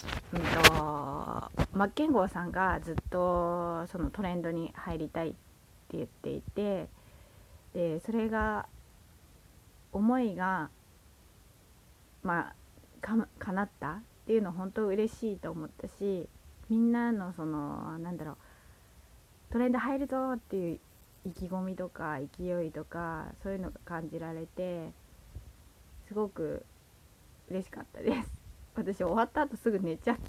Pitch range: 155-210 Hz